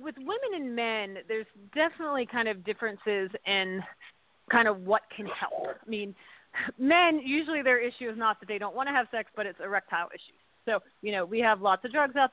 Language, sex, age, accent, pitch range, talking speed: English, female, 30-49, American, 210-265 Hz, 210 wpm